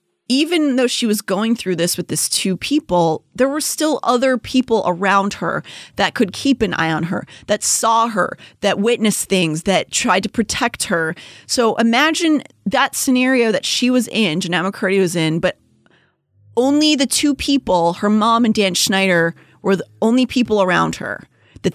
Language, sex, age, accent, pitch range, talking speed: English, female, 30-49, American, 180-235 Hz, 180 wpm